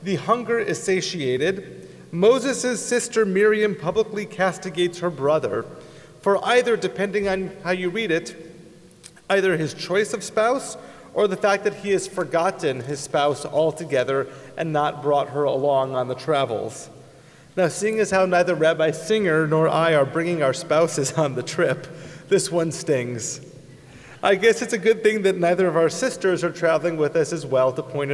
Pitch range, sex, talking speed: 150-195 Hz, male, 170 wpm